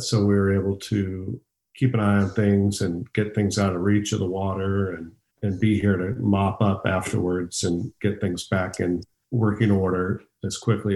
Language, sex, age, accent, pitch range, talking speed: English, male, 50-69, American, 95-110 Hz, 195 wpm